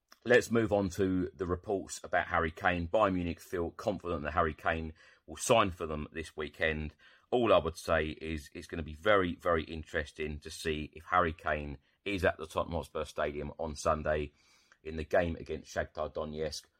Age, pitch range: 30-49, 75-85 Hz